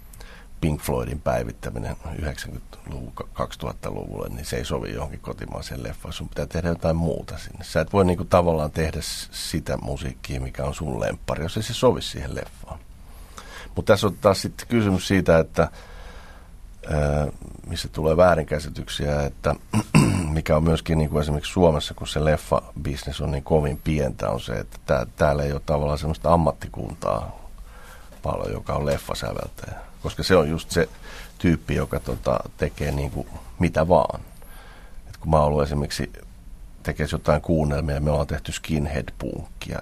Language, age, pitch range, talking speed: Finnish, 50-69, 70-80 Hz, 150 wpm